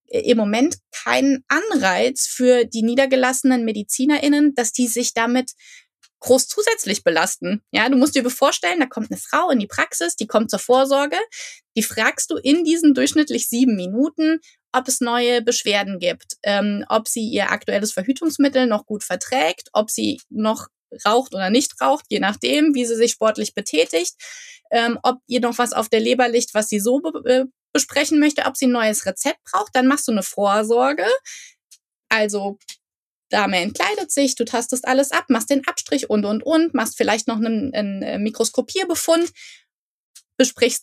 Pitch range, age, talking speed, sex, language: 225-280 Hz, 20-39, 170 wpm, female, German